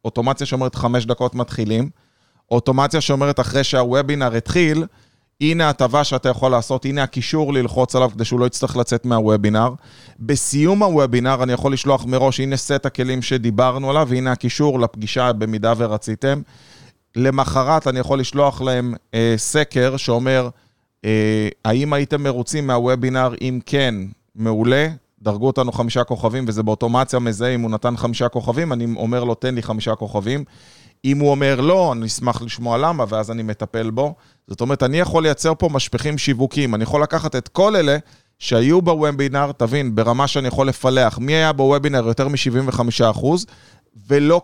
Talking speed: 155 wpm